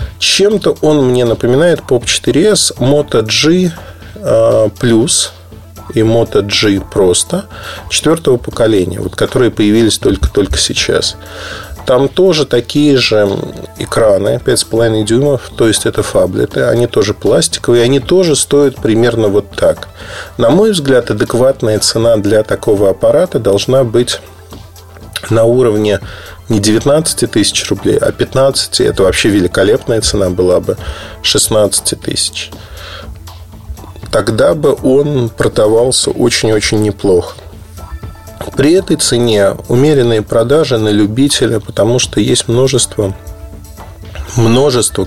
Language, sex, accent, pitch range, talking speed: Russian, male, native, 100-130 Hz, 110 wpm